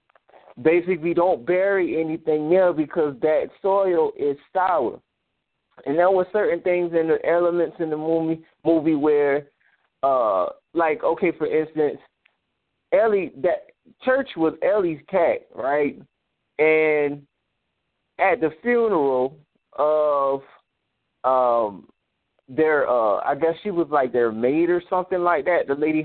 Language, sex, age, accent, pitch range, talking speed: English, male, 20-39, American, 150-195 Hz, 130 wpm